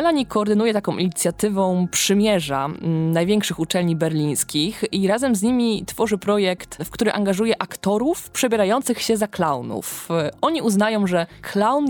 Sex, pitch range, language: female, 160-215 Hz, Polish